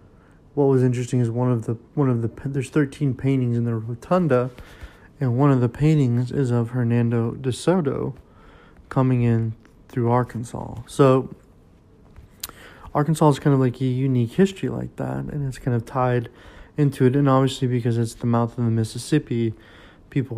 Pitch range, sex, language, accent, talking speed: 115-135 Hz, male, English, American, 170 wpm